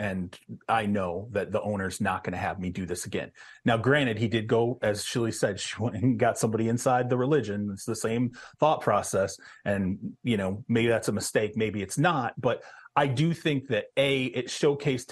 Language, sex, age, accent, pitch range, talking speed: English, male, 30-49, American, 110-140 Hz, 210 wpm